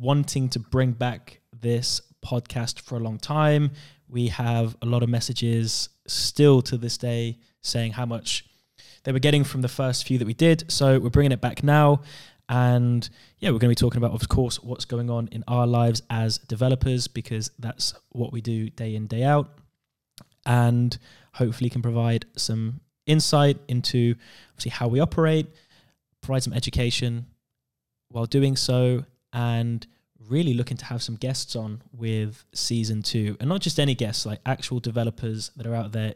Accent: British